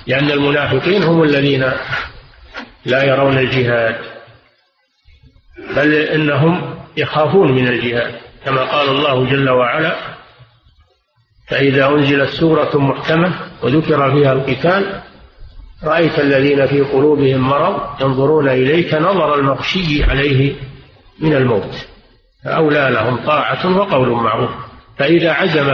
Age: 50-69